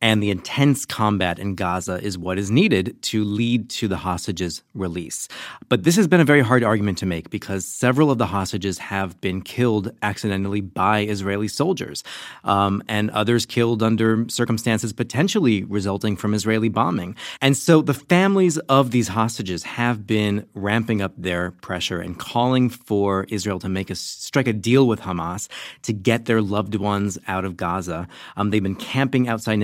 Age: 30-49